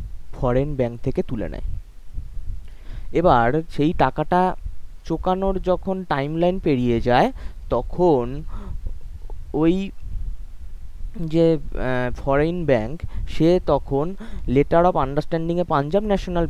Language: Bengali